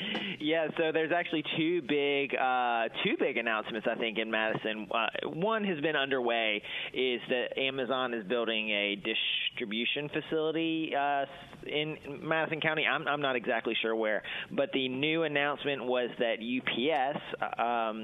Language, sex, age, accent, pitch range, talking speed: English, male, 30-49, American, 115-145 Hz, 150 wpm